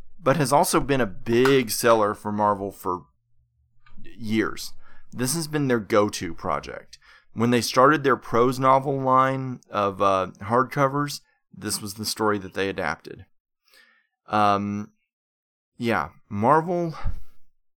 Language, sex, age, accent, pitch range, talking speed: English, male, 30-49, American, 105-140 Hz, 125 wpm